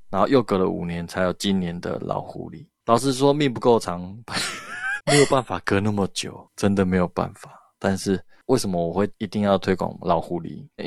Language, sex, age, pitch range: Chinese, male, 20-39, 90-105 Hz